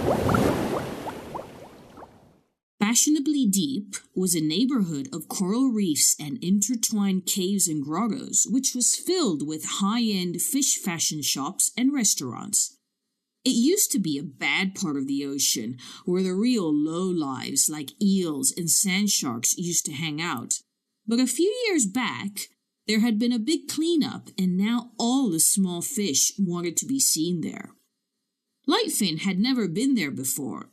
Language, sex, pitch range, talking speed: English, female, 175-265 Hz, 150 wpm